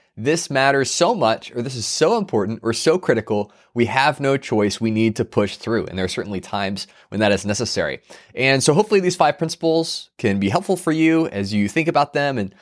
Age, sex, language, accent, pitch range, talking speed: 20-39, male, English, American, 115-160 Hz, 225 wpm